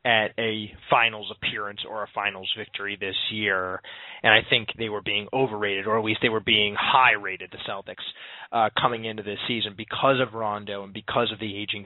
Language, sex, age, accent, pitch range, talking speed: English, male, 30-49, American, 115-140 Hz, 195 wpm